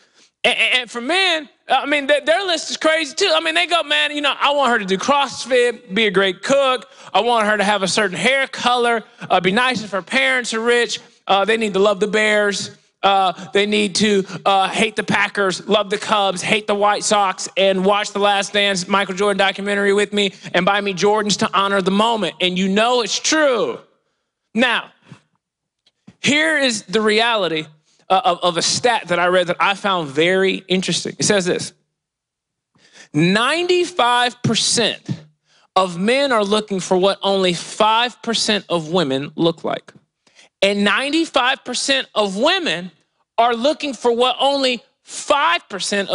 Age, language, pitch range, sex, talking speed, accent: 20-39, English, 190-265 Hz, male, 175 wpm, American